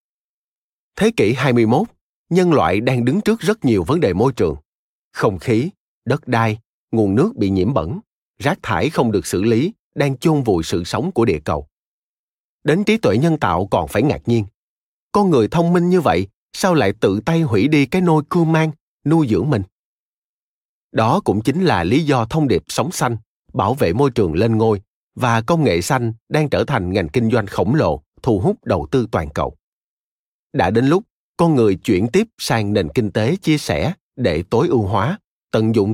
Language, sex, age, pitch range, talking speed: Vietnamese, male, 30-49, 105-160 Hz, 195 wpm